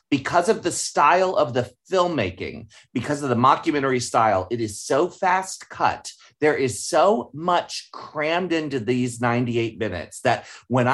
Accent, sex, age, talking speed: American, male, 30-49, 155 wpm